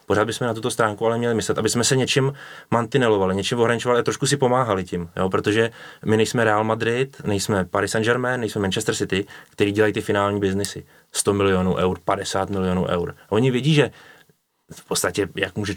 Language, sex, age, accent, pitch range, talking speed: Czech, male, 20-39, native, 95-115 Hz, 195 wpm